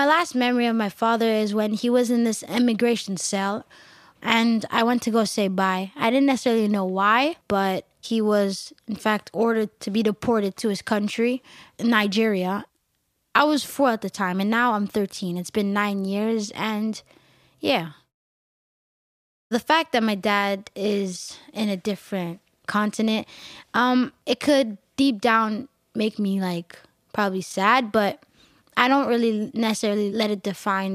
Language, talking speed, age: English, 160 wpm, 10-29